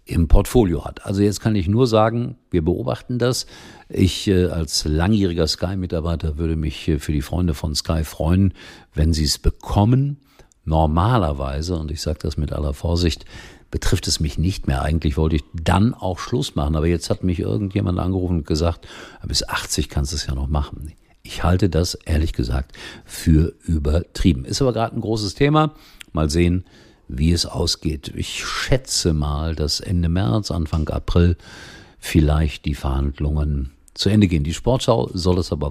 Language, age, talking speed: German, 50-69, 170 wpm